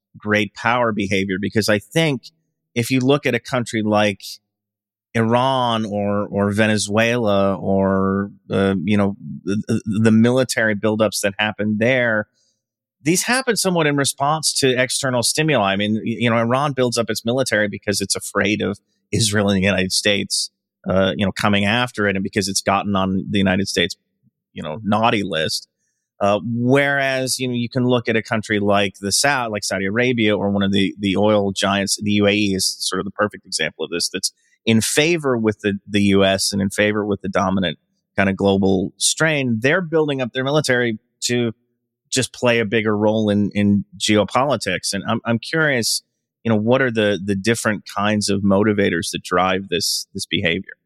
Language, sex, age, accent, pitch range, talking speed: English, male, 30-49, American, 100-120 Hz, 185 wpm